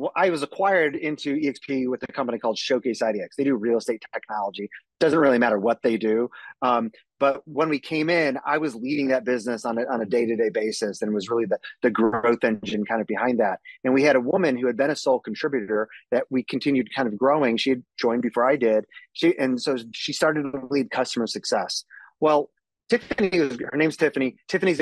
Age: 30-49